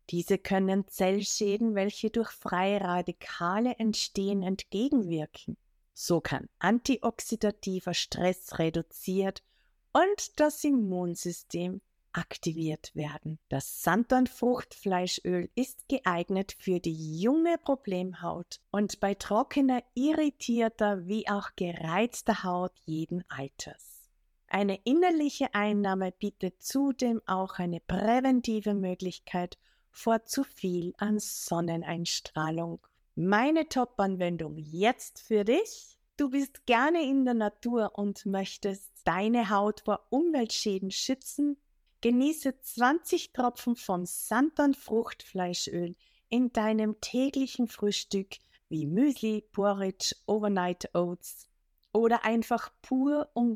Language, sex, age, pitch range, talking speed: German, female, 50-69, 180-245 Hz, 100 wpm